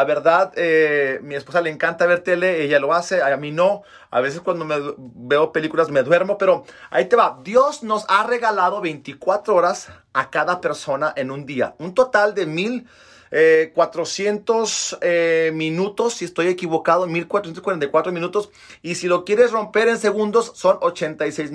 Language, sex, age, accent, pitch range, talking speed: Spanish, male, 40-59, Mexican, 160-215 Hz, 170 wpm